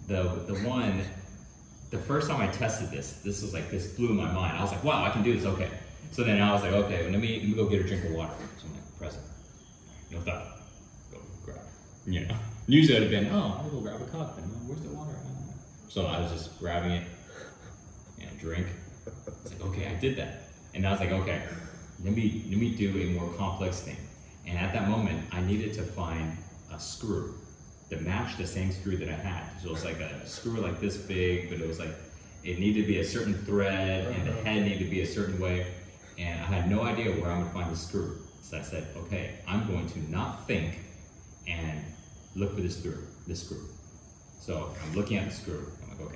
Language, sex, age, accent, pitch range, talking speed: English, male, 30-49, American, 85-100 Hz, 235 wpm